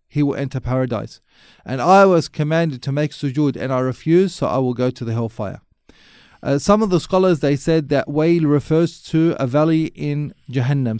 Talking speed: 195 wpm